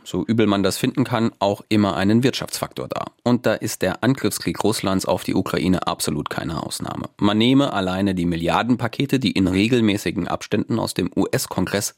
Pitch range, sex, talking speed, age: 95-120 Hz, male, 175 wpm, 30-49